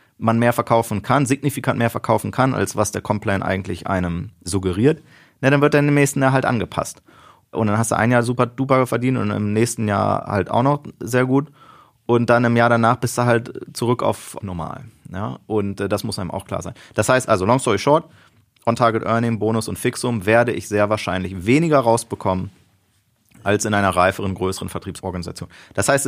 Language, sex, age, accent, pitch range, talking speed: German, male, 30-49, German, 95-120 Hz, 190 wpm